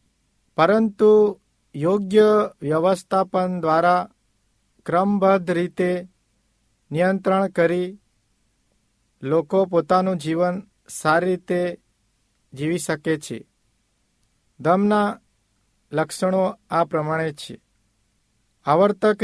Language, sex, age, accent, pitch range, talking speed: Hindi, male, 50-69, native, 120-190 Hz, 55 wpm